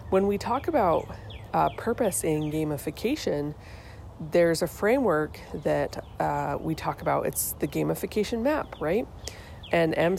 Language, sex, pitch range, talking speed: English, female, 145-185 Hz, 135 wpm